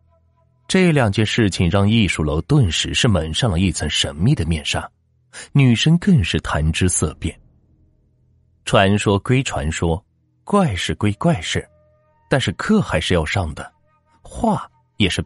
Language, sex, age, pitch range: Chinese, male, 30-49, 85-125 Hz